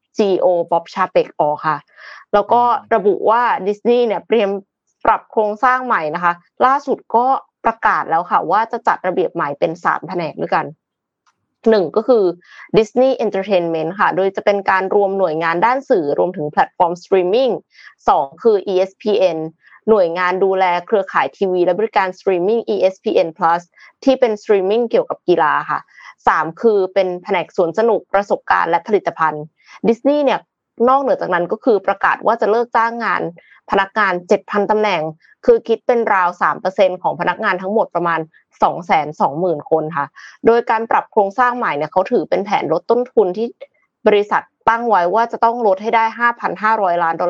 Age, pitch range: 20-39, 180-230 Hz